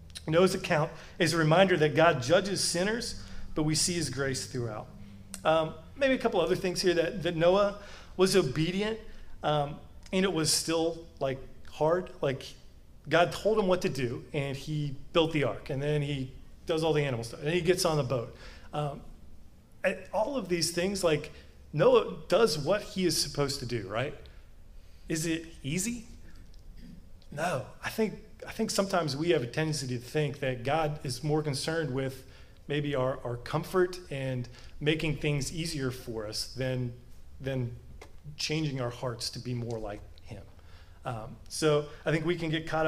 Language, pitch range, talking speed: English, 120-165 Hz, 175 wpm